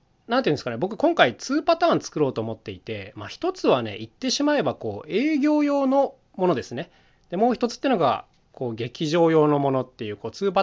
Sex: male